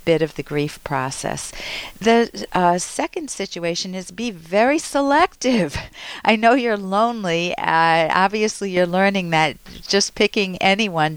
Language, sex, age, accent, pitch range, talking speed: English, female, 50-69, American, 170-240 Hz, 135 wpm